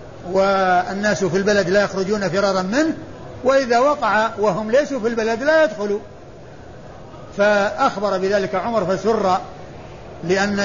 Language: Arabic